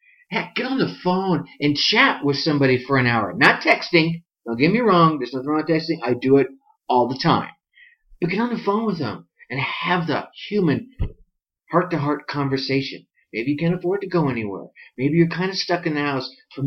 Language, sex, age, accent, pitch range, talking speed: English, male, 50-69, American, 135-180 Hz, 210 wpm